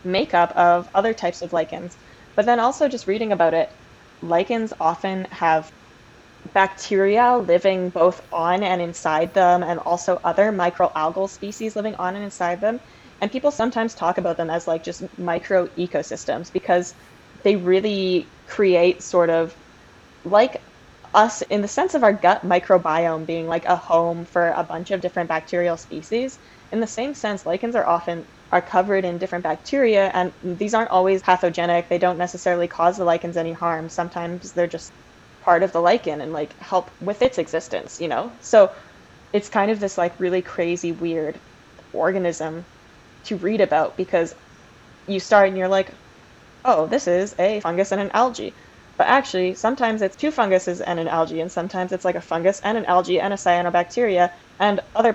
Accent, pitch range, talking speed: American, 170-195 Hz, 175 wpm